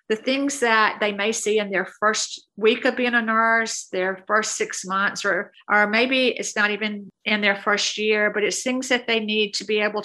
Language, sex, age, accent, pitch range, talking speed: English, female, 50-69, American, 205-225 Hz, 220 wpm